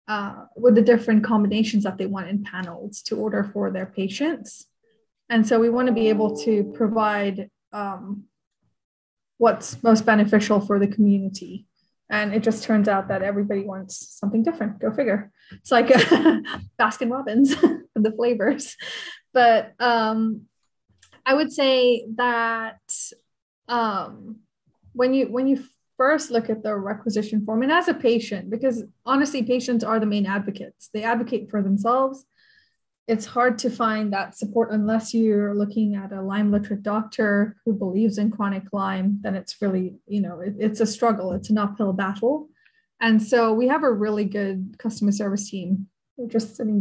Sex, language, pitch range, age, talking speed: female, English, 205-240 Hz, 20-39, 165 wpm